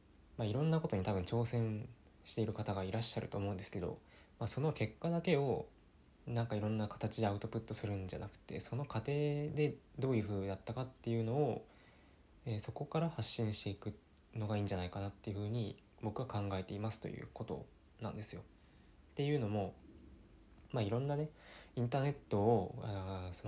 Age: 20-39